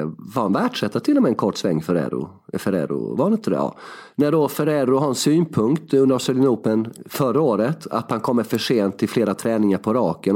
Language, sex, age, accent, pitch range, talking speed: Swedish, male, 30-49, native, 125-175 Hz, 185 wpm